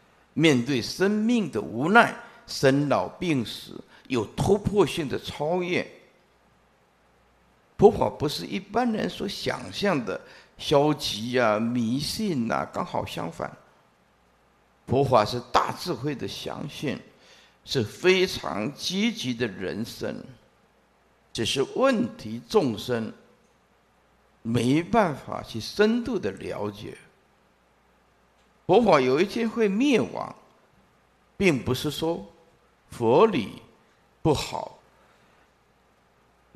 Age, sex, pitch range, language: 50-69, male, 120-180 Hz, Chinese